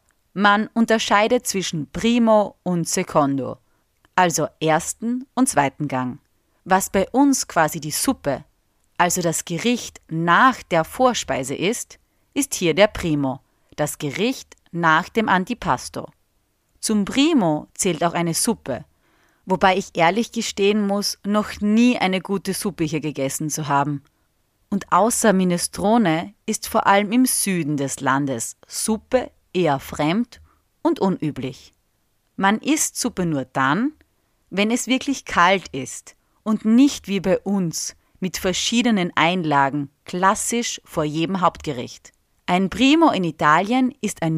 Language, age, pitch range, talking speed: German, 30-49, 155-220 Hz, 130 wpm